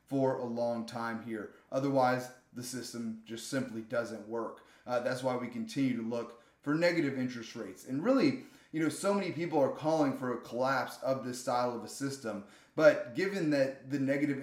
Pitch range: 125-160 Hz